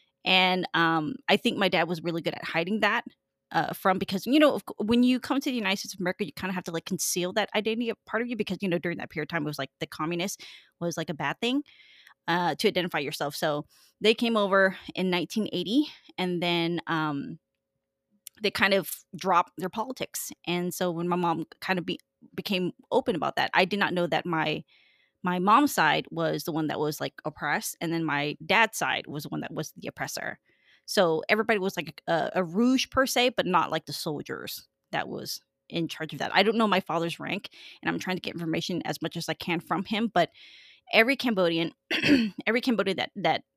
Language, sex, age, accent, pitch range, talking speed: English, female, 20-39, American, 165-210 Hz, 220 wpm